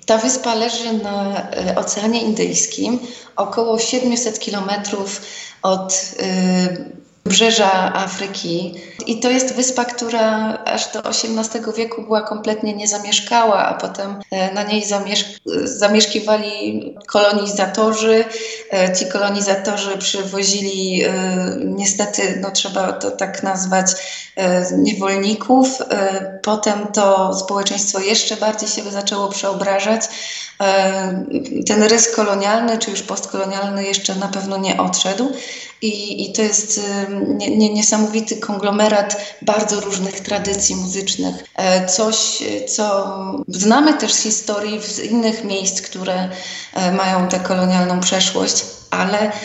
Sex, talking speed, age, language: female, 105 wpm, 20-39, Polish